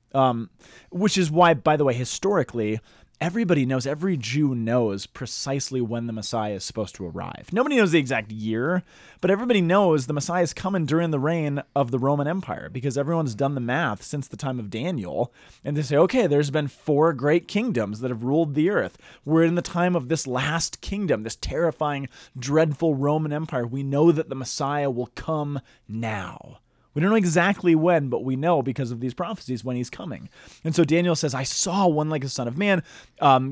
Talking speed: 200 wpm